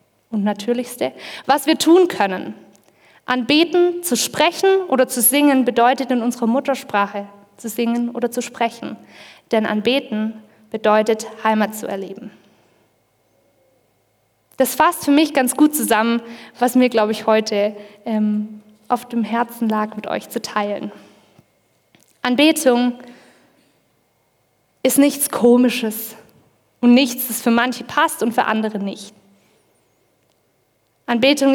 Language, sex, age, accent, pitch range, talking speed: German, female, 20-39, German, 215-260 Hz, 120 wpm